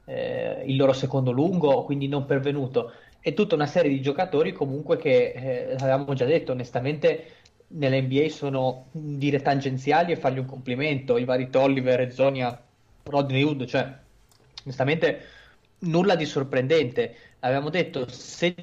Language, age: Italian, 20-39